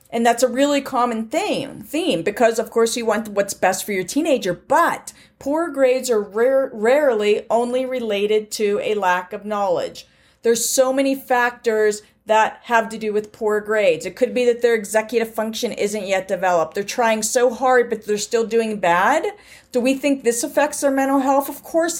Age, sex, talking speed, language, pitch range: 40-59, female, 190 wpm, English, 220-270 Hz